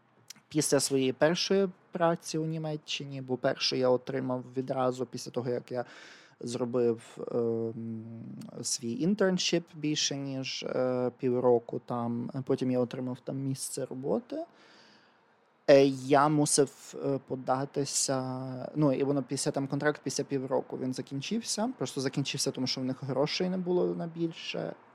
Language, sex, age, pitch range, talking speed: Ukrainian, male, 20-39, 125-150 Hz, 135 wpm